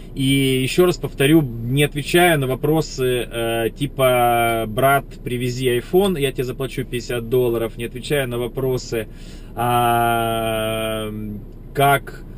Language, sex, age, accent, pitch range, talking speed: Russian, male, 20-39, native, 110-140 Hz, 115 wpm